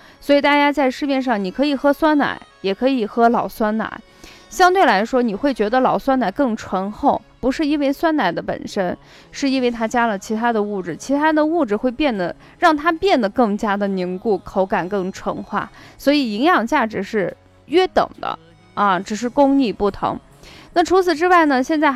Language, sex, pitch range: Chinese, female, 215-300 Hz